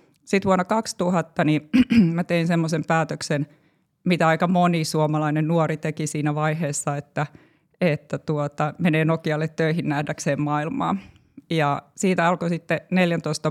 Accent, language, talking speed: native, Finnish, 130 wpm